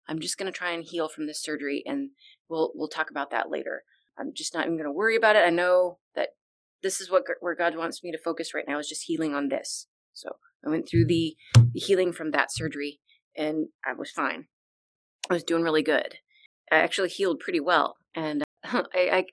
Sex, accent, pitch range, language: female, American, 155-215 Hz, English